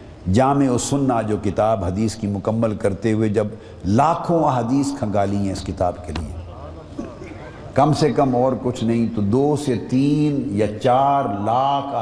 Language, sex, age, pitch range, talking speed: Urdu, male, 50-69, 100-125 Hz, 160 wpm